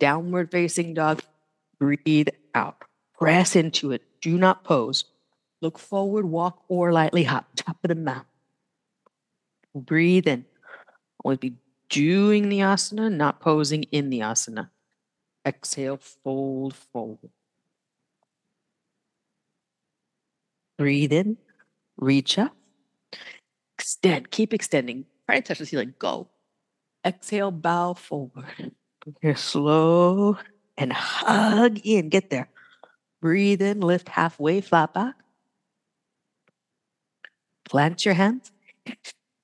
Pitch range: 145-195 Hz